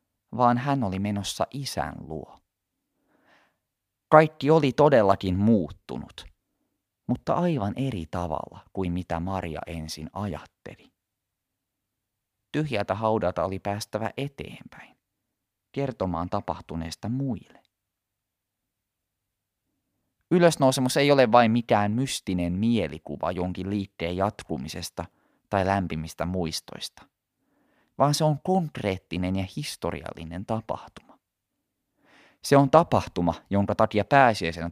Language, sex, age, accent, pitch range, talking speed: Finnish, male, 30-49, native, 90-130 Hz, 90 wpm